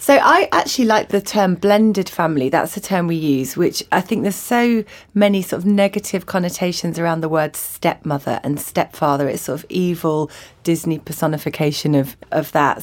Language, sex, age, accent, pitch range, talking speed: English, female, 30-49, British, 155-195 Hz, 180 wpm